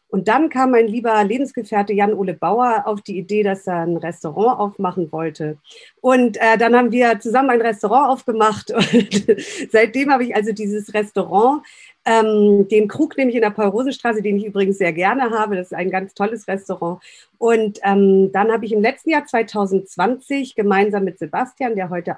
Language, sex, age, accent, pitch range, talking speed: German, female, 50-69, German, 195-235 Hz, 180 wpm